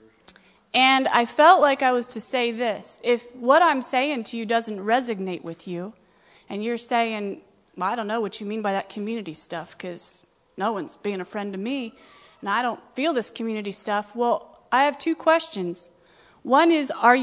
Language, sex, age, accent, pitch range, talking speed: English, female, 30-49, American, 200-260 Hz, 195 wpm